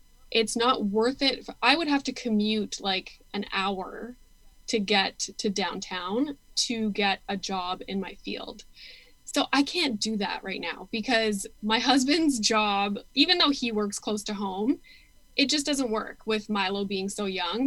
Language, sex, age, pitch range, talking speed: English, female, 10-29, 200-255 Hz, 170 wpm